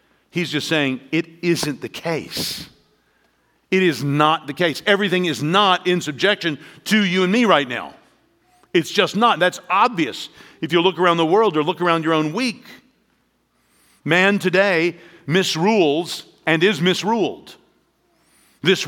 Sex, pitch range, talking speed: male, 145-190 Hz, 150 wpm